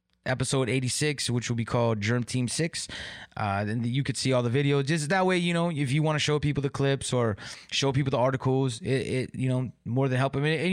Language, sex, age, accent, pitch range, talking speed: English, male, 20-39, American, 120-150 Hz, 250 wpm